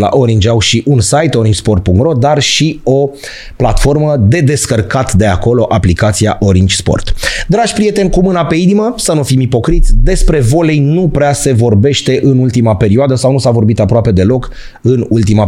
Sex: male